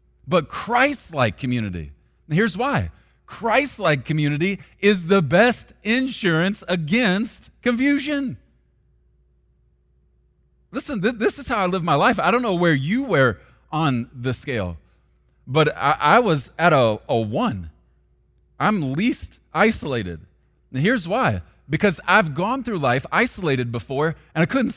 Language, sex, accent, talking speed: English, male, American, 135 wpm